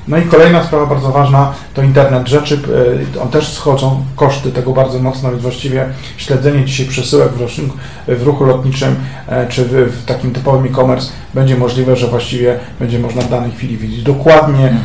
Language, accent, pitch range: Polish, native, 125-140 Hz